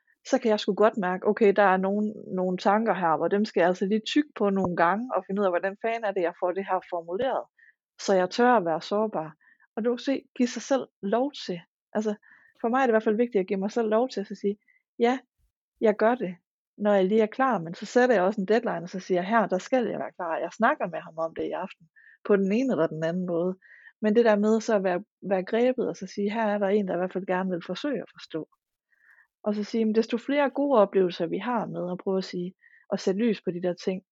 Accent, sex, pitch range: native, female, 185-225 Hz